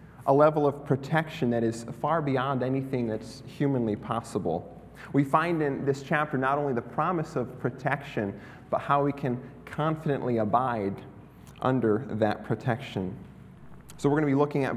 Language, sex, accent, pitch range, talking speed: English, male, American, 110-140 Hz, 160 wpm